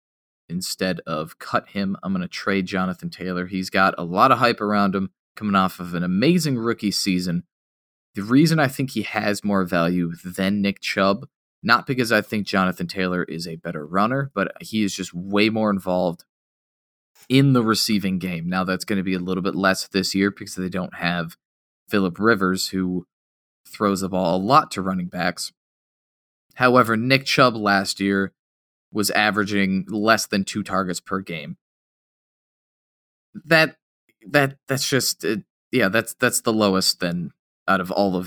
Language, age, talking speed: English, 20-39, 175 wpm